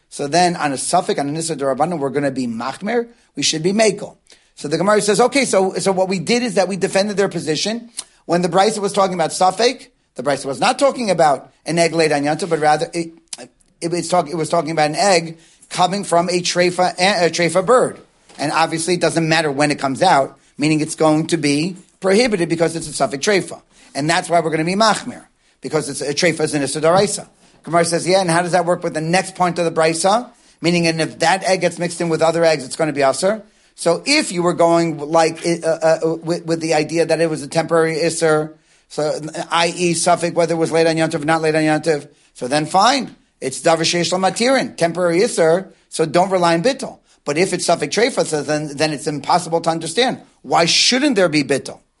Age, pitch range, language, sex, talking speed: 40-59, 155-185 Hz, English, male, 225 wpm